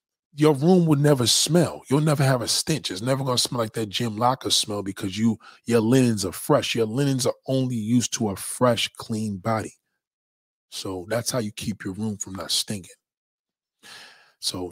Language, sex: English, male